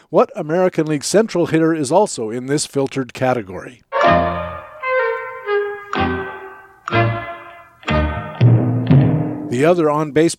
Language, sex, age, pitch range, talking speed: English, male, 50-69, 130-170 Hz, 80 wpm